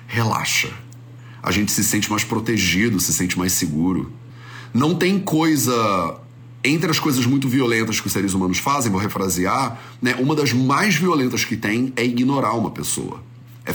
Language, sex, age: Portuguese, male, 30-49